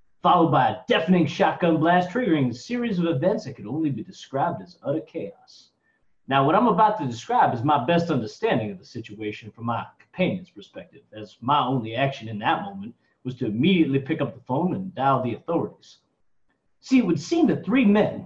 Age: 30-49